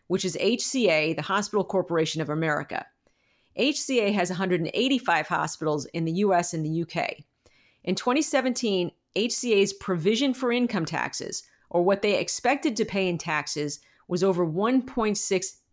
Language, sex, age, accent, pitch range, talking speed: English, female, 40-59, American, 160-205 Hz, 135 wpm